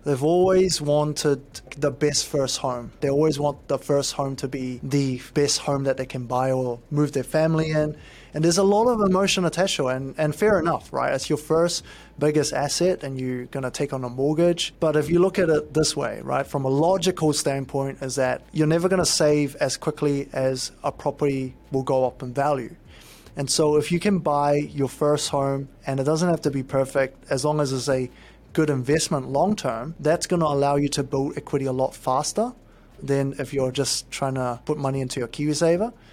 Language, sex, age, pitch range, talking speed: English, male, 20-39, 135-160 Hz, 220 wpm